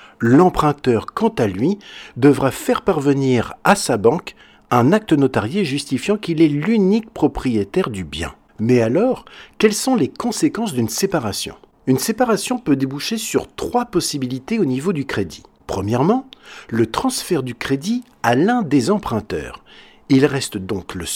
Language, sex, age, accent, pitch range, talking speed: French, male, 60-79, French, 125-205 Hz, 145 wpm